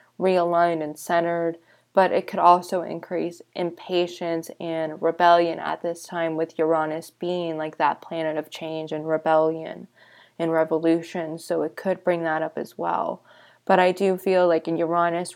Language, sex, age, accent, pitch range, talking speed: English, female, 20-39, American, 165-175 Hz, 160 wpm